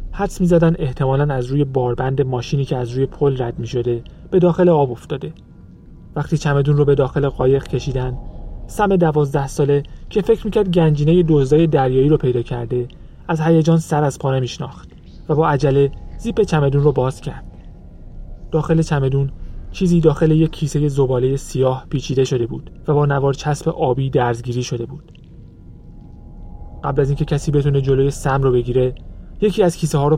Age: 30-49